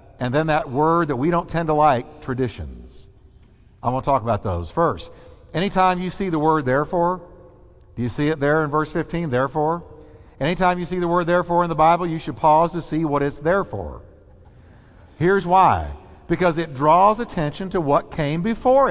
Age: 50-69